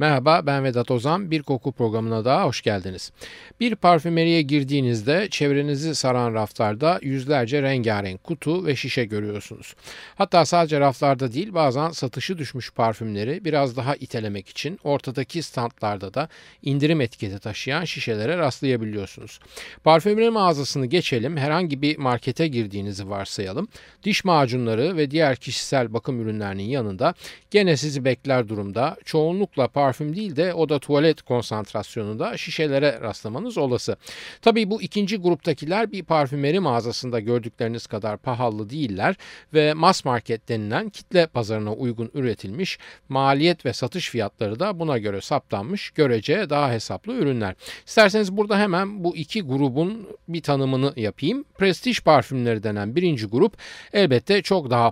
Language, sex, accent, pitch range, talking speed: Turkish, male, native, 115-165 Hz, 135 wpm